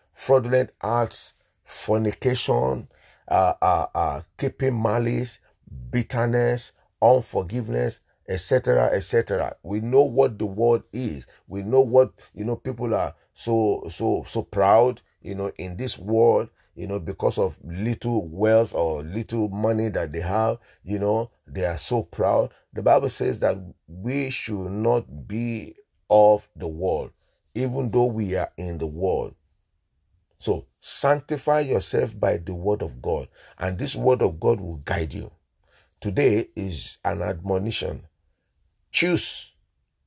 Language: English